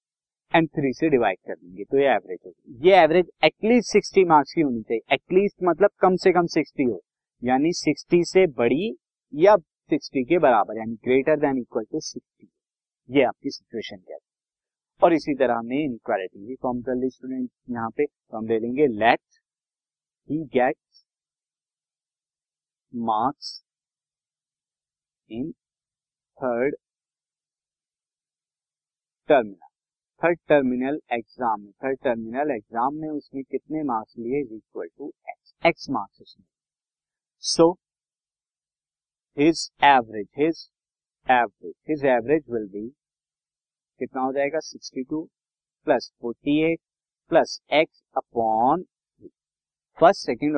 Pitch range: 125-170 Hz